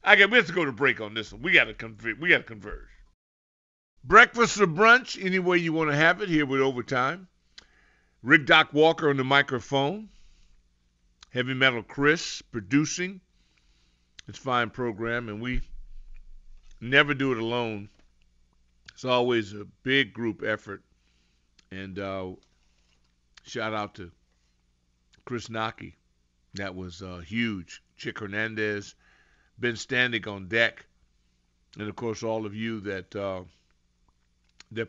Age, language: 50-69, English